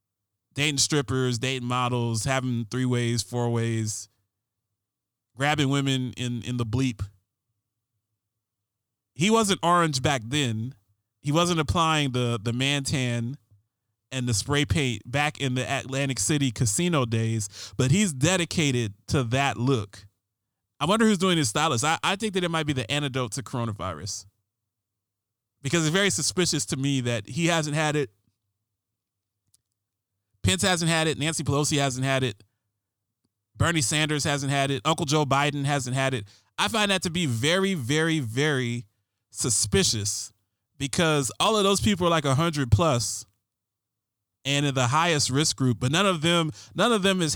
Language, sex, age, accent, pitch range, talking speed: English, male, 20-39, American, 110-150 Hz, 160 wpm